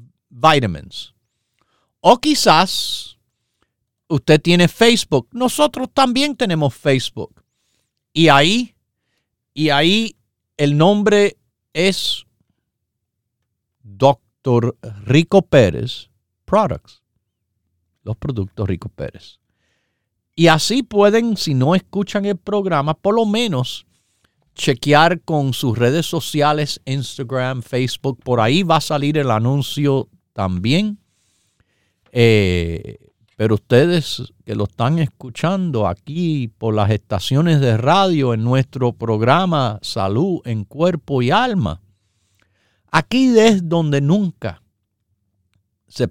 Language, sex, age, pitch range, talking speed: Spanish, male, 50-69, 105-165 Hz, 100 wpm